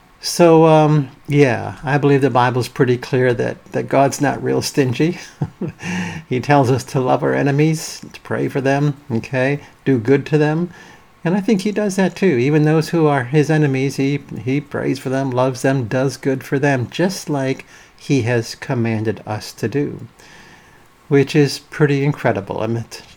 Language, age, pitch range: English, 50-69, 120-145 Hz